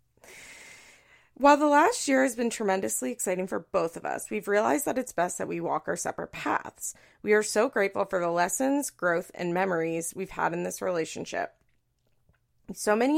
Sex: female